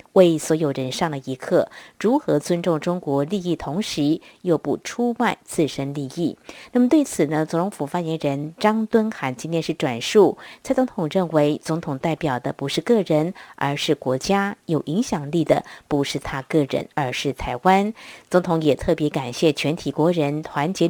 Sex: female